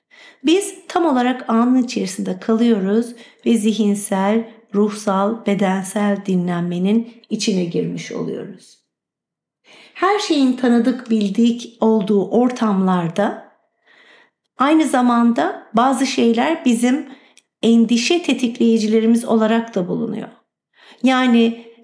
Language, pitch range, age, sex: Turkish, 205-250 Hz, 50-69, female